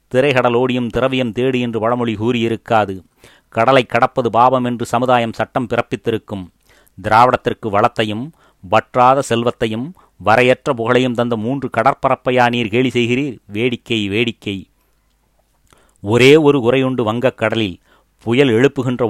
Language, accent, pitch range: Tamil, native, 110-130 Hz